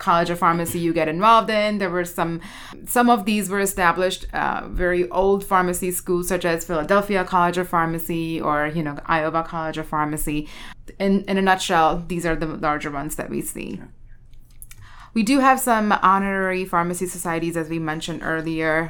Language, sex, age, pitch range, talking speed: English, female, 30-49, 160-190 Hz, 180 wpm